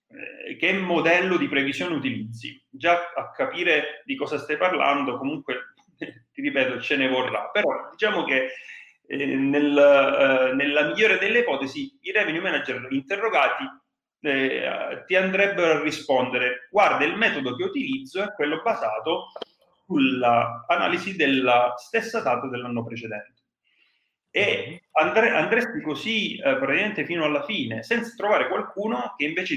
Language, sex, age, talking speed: Italian, male, 30-49, 130 wpm